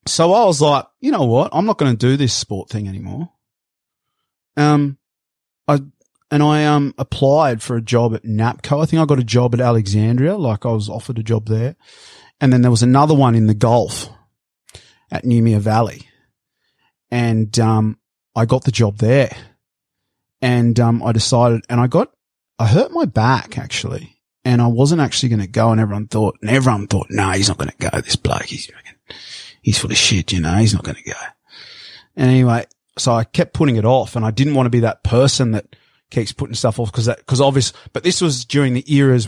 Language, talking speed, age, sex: English, 210 wpm, 30-49, male